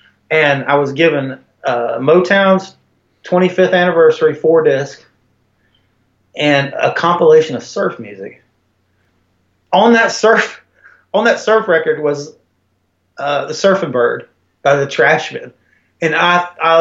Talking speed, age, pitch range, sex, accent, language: 120 wpm, 30-49, 145-205 Hz, male, American, English